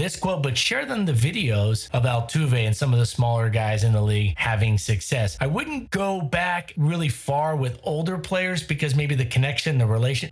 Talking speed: 205 wpm